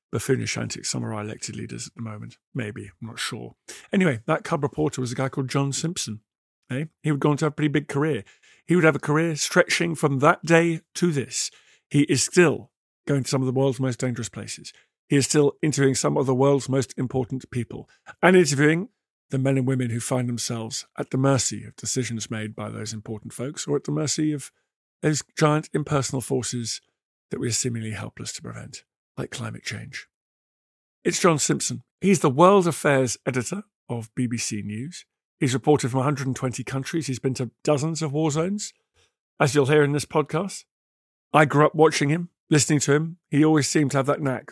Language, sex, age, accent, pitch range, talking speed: English, male, 50-69, British, 120-155 Hz, 205 wpm